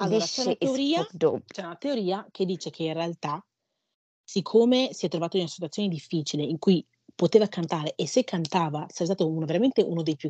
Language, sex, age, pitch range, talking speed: Italian, female, 30-49, 150-185 Hz, 200 wpm